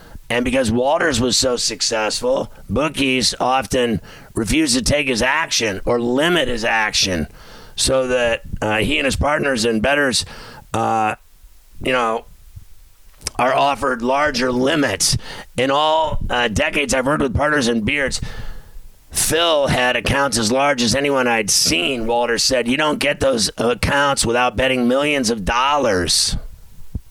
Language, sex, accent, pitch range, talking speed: English, male, American, 110-135 Hz, 140 wpm